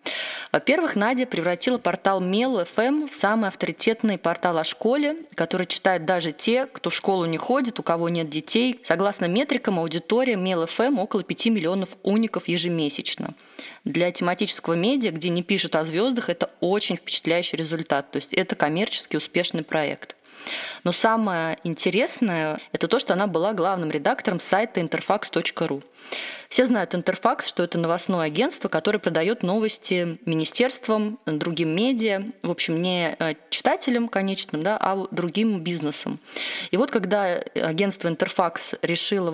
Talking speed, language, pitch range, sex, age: 140 wpm, Russian, 165-215 Hz, female, 20-39